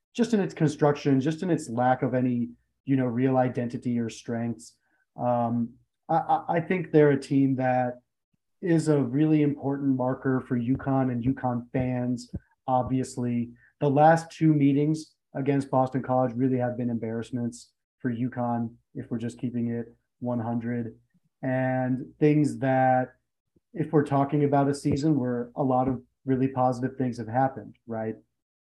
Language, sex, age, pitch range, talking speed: English, male, 30-49, 125-145 Hz, 155 wpm